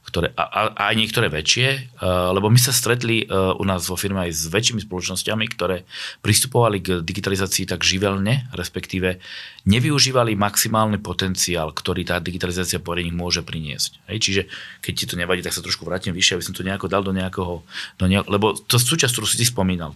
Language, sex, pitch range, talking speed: Slovak, male, 85-110 Hz, 180 wpm